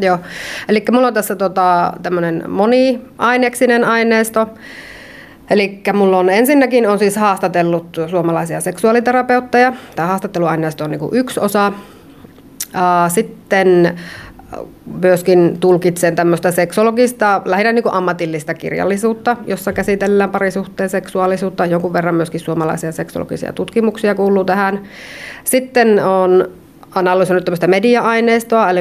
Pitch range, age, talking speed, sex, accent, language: 170-215 Hz, 30-49, 105 wpm, female, native, Finnish